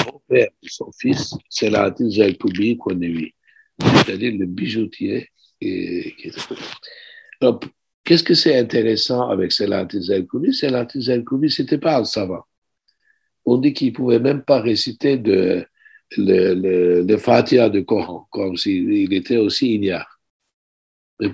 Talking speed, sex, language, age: 125 wpm, male, French, 60-79